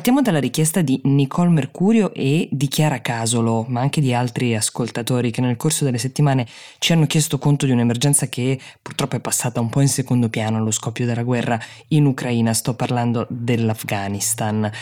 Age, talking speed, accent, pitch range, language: 20-39, 180 wpm, native, 120-145 Hz, Italian